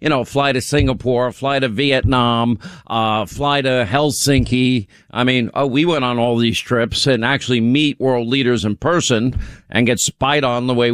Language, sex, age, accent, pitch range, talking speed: English, male, 50-69, American, 120-145 Hz, 185 wpm